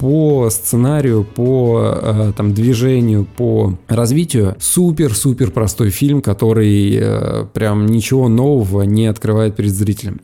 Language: Russian